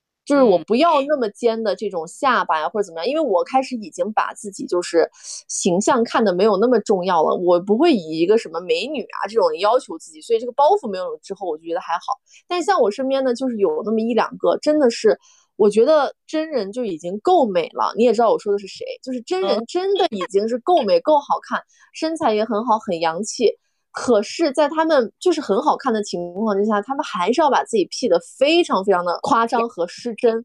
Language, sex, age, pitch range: Chinese, female, 20-39, 210-335 Hz